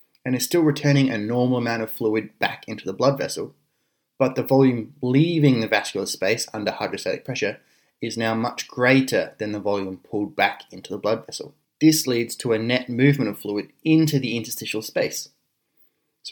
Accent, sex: Australian, male